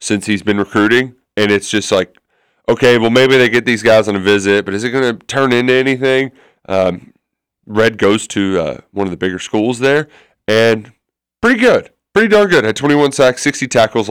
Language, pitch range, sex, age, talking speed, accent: English, 100-130 Hz, male, 20-39, 205 wpm, American